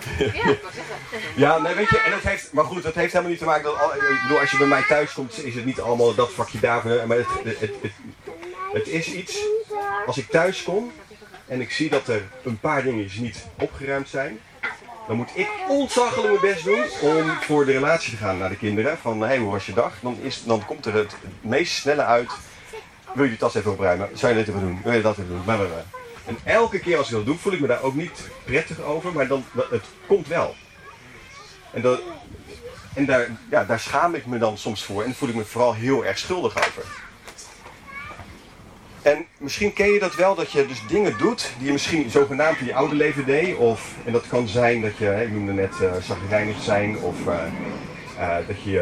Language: Dutch